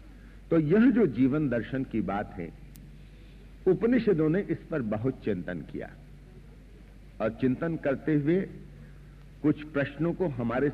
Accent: native